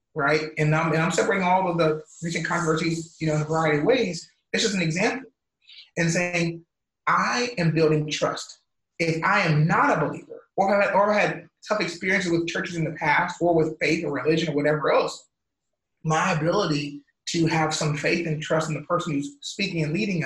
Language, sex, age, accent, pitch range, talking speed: English, male, 30-49, American, 155-195 Hz, 205 wpm